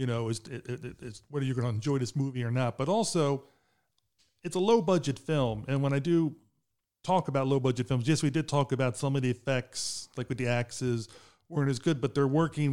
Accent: American